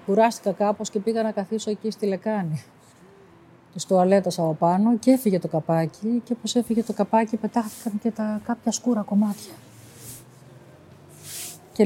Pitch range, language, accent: 180-230 Hz, Greek, native